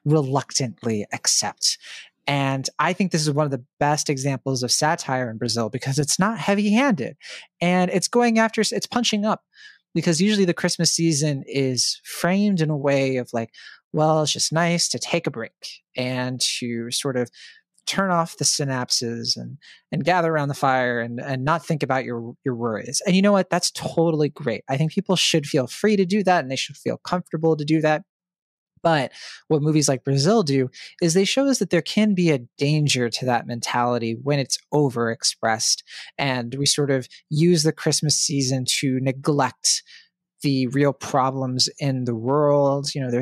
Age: 30-49